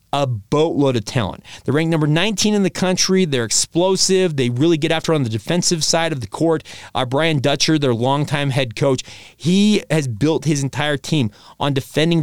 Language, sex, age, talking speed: English, male, 30-49, 190 wpm